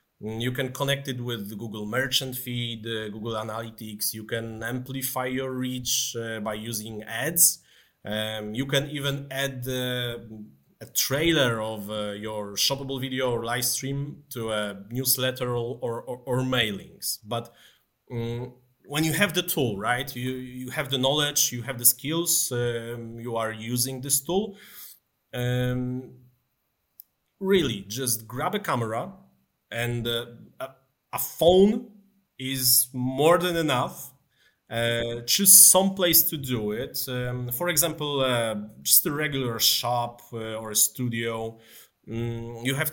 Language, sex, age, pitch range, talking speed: English, male, 30-49, 115-140 Hz, 145 wpm